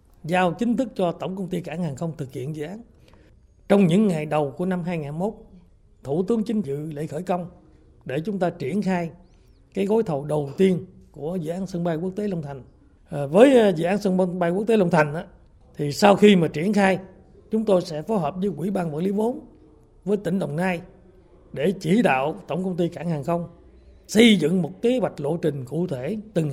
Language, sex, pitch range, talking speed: Vietnamese, male, 150-190 Hz, 220 wpm